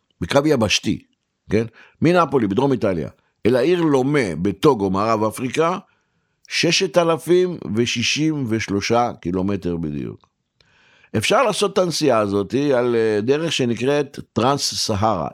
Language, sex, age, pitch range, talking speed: Hebrew, male, 60-79, 100-145 Hz, 105 wpm